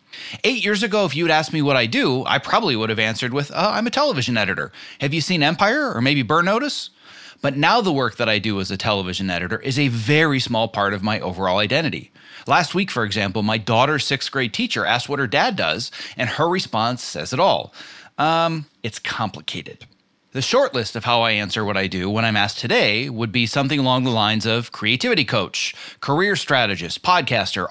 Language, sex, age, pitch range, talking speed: English, male, 30-49, 110-145 Hz, 210 wpm